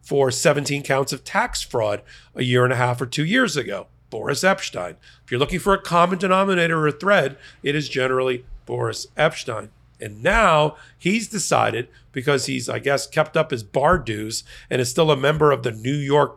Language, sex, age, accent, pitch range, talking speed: English, male, 40-59, American, 125-160 Hz, 200 wpm